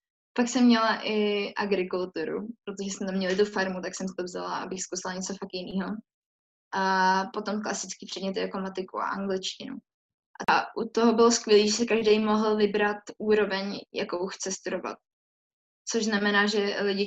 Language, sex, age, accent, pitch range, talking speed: Czech, female, 10-29, native, 190-215 Hz, 160 wpm